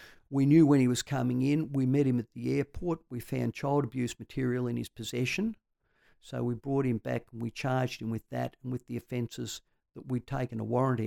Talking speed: 220 wpm